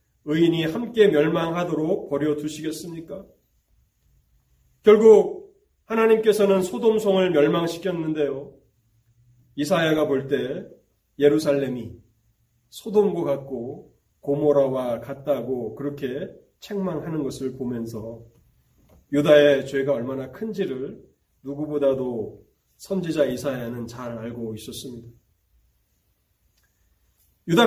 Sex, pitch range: male, 135-210 Hz